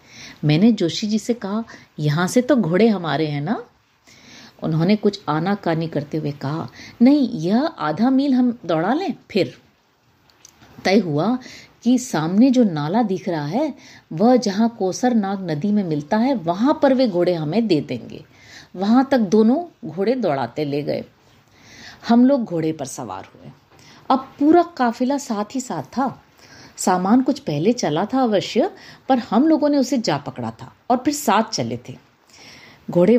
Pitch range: 165-245 Hz